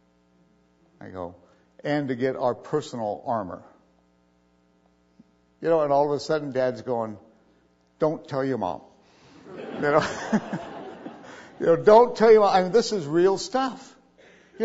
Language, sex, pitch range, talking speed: English, male, 130-185 Hz, 150 wpm